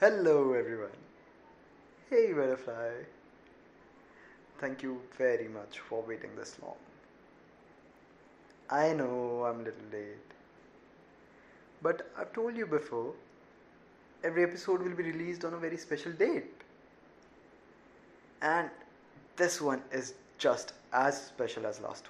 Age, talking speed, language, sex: 20-39, 120 wpm, English, male